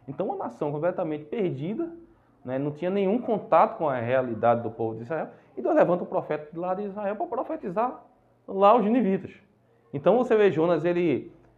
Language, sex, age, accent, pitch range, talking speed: Portuguese, male, 20-39, Brazilian, 115-190 Hz, 180 wpm